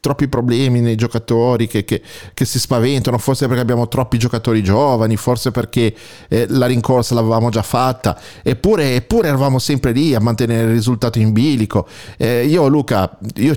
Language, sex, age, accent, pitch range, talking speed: Italian, male, 30-49, native, 110-130 Hz, 165 wpm